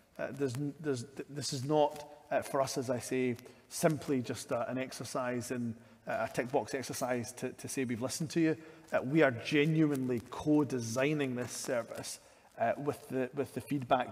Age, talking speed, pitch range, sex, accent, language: 30-49, 185 wpm, 120-140 Hz, male, British, English